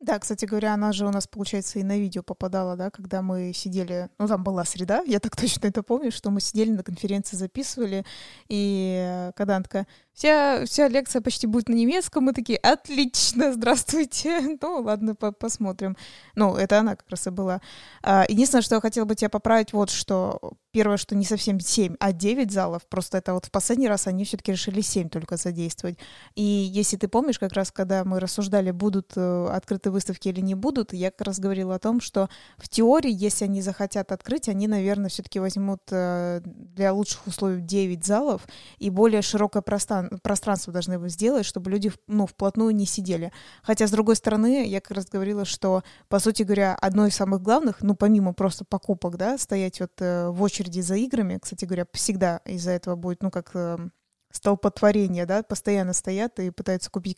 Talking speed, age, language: 190 wpm, 20-39, Russian